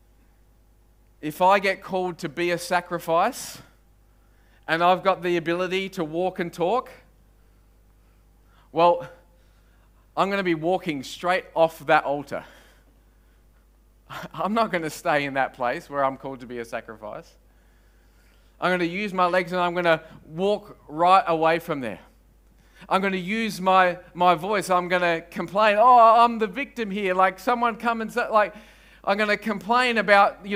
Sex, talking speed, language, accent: male, 165 wpm, English, Australian